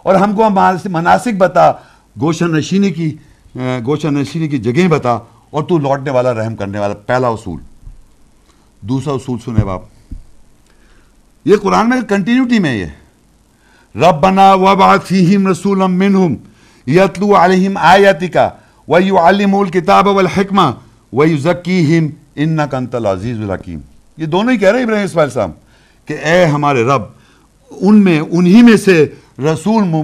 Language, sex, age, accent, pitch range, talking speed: English, male, 60-79, Indian, 120-175 Hz, 120 wpm